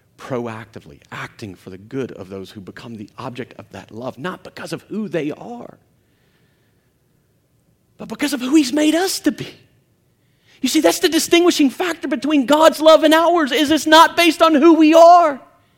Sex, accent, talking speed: male, American, 185 wpm